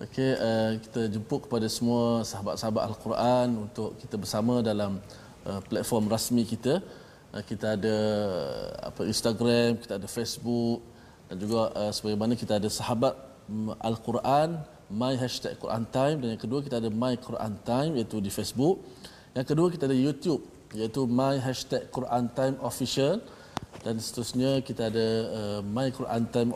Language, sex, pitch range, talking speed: Malayalam, male, 110-130 Hz, 150 wpm